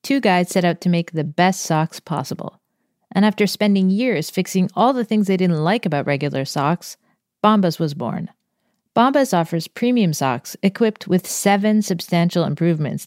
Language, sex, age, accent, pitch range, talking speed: English, female, 40-59, American, 165-210 Hz, 165 wpm